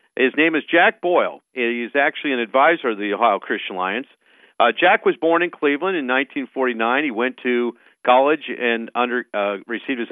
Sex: male